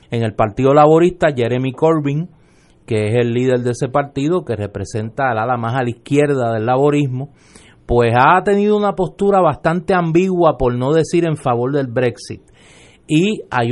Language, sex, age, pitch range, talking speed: Spanish, male, 30-49, 115-150 Hz, 170 wpm